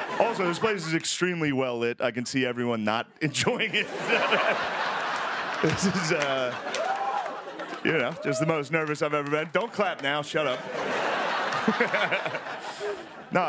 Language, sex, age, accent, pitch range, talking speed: English, male, 30-49, American, 110-165 Hz, 140 wpm